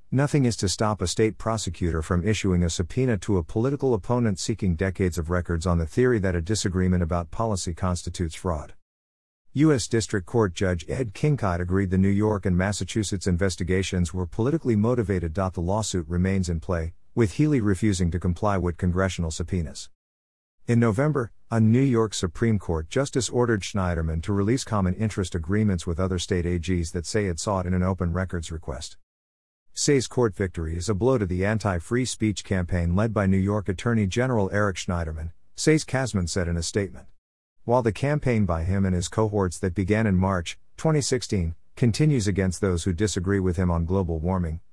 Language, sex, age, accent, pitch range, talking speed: English, male, 50-69, American, 90-110 Hz, 180 wpm